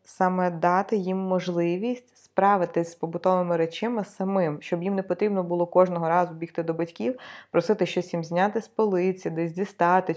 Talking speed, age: 160 wpm, 20-39